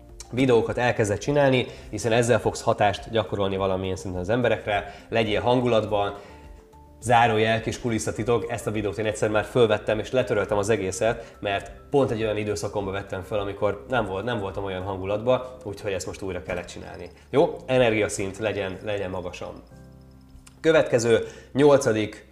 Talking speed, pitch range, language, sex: 150 wpm, 100-120 Hz, Hungarian, male